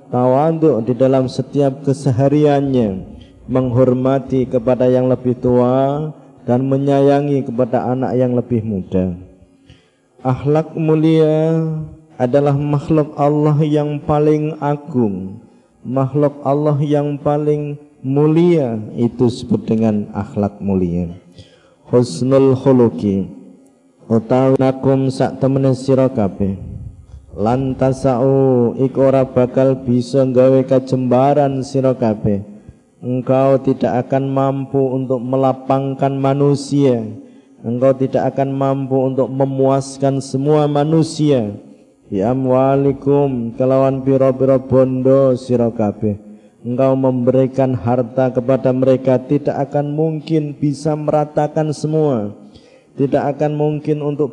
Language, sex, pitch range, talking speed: Indonesian, male, 125-145 Hz, 95 wpm